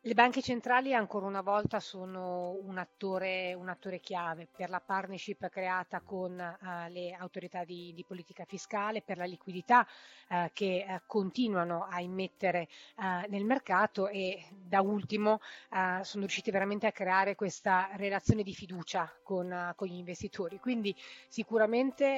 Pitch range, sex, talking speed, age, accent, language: 185-205 Hz, female, 150 wpm, 30-49, native, Italian